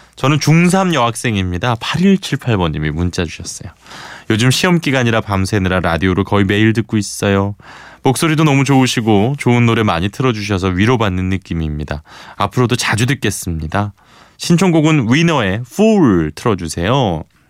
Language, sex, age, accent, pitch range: Korean, male, 20-39, native, 90-130 Hz